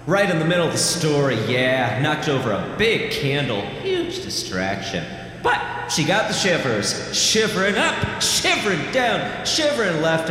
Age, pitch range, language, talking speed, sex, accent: 40-59, 145-215 Hz, English, 150 wpm, male, American